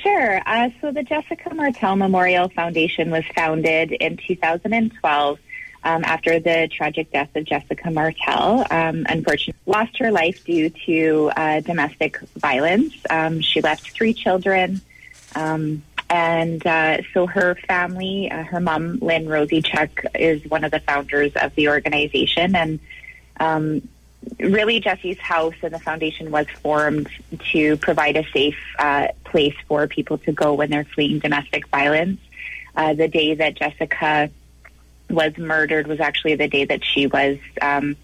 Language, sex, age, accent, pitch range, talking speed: English, female, 20-39, American, 150-175 Hz, 150 wpm